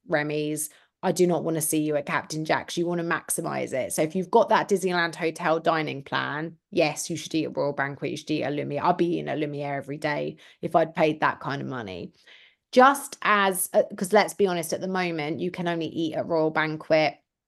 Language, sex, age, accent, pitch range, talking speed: English, female, 30-49, British, 160-200 Hz, 235 wpm